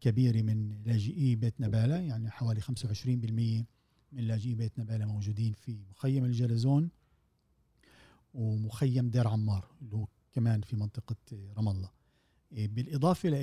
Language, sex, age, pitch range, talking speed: Arabic, male, 50-69, 110-135 Hz, 115 wpm